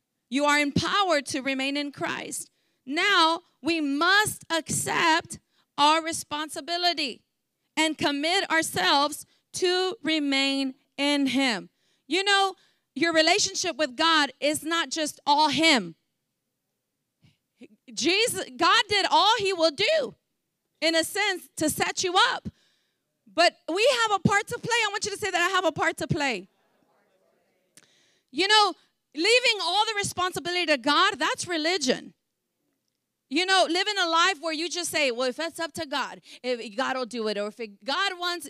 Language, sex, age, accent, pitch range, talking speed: English, female, 30-49, American, 290-380 Hz, 155 wpm